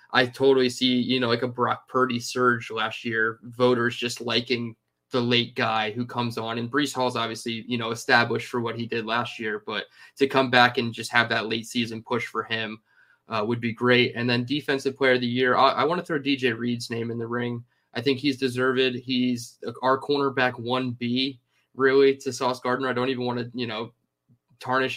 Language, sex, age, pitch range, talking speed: English, male, 20-39, 115-130 Hz, 215 wpm